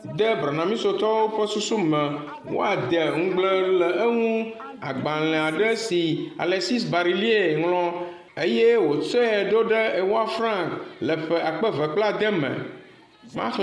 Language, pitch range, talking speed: French, 185-225 Hz, 85 wpm